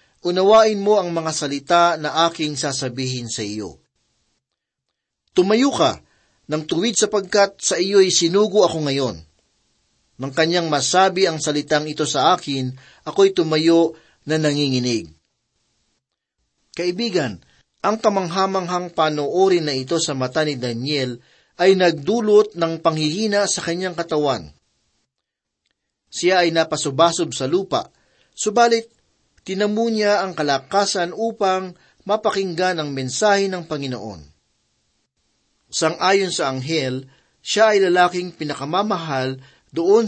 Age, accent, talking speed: 40-59, native, 110 wpm